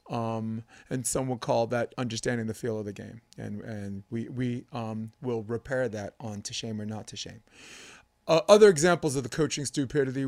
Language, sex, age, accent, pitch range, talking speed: English, male, 30-49, American, 120-180 Hz, 200 wpm